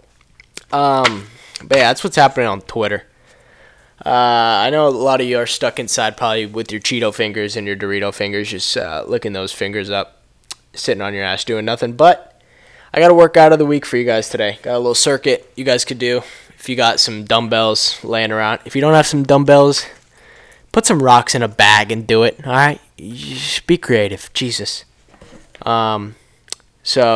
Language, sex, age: English, male, 10-29